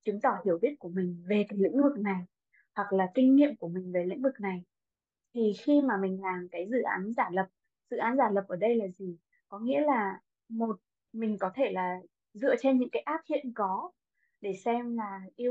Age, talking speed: 20-39, 225 wpm